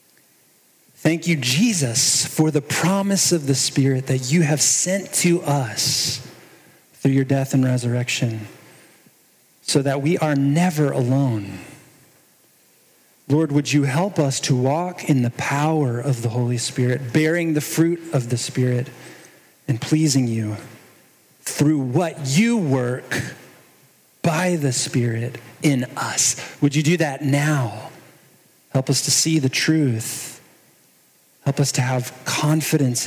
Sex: male